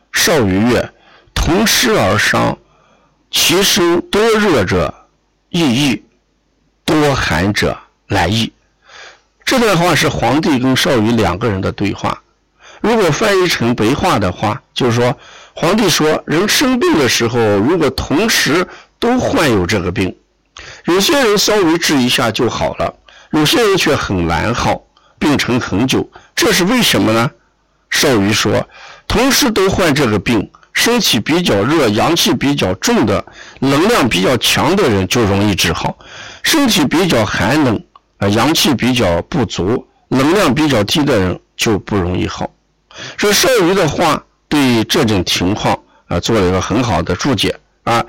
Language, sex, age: Chinese, male, 60-79